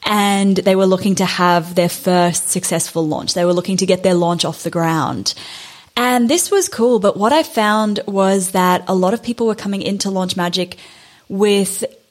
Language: English